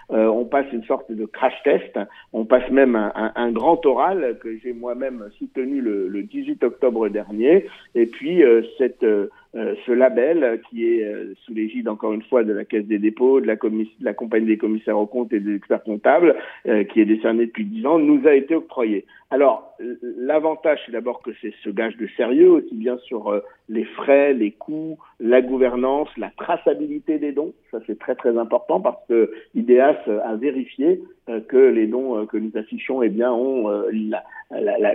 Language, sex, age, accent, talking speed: Italian, male, 50-69, French, 210 wpm